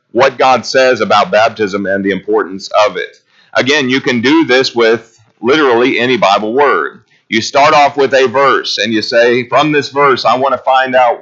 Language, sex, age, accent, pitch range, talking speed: English, male, 40-59, American, 115-145 Hz, 200 wpm